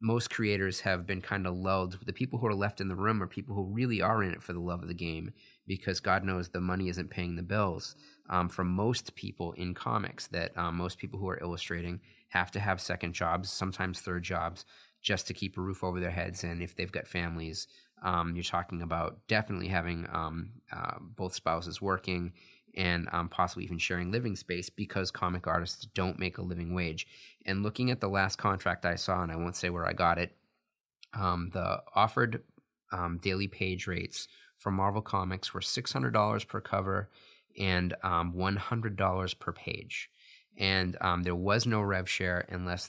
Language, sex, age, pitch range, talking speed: English, male, 30-49, 85-100 Hz, 195 wpm